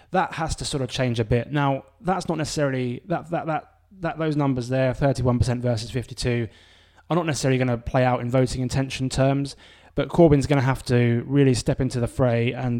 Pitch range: 120-145 Hz